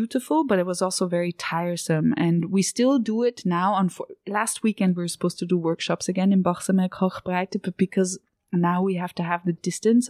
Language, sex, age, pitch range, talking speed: English, female, 20-39, 175-200 Hz, 210 wpm